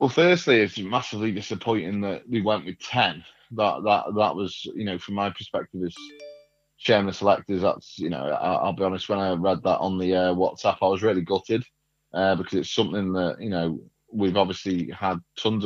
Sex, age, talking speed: male, 20-39, 205 wpm